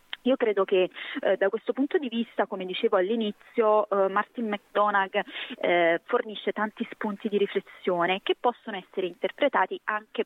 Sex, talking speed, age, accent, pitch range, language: female, 150 wpm, 30-49, native, 190-230 Hz, Italian